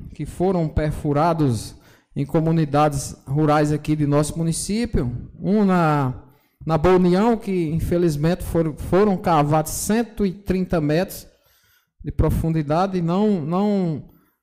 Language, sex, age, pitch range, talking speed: Portuguese, male, 20-39, 150-185 Hz, 110 wpm